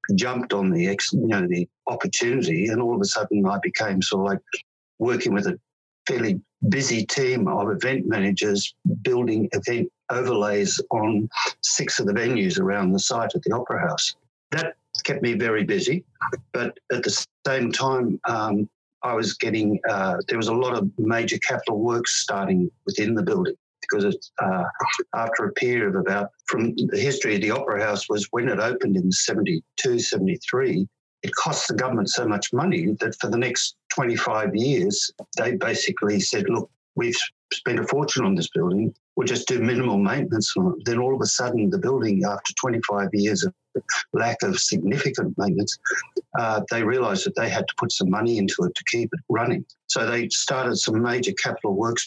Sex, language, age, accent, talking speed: male, English, 60-79, Australian, 175 wpm